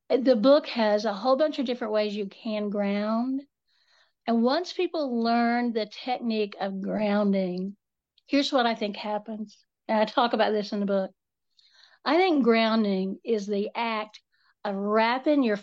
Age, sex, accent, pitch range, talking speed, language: 60-79, female, American, 210-260 Hz, 160 wpm, English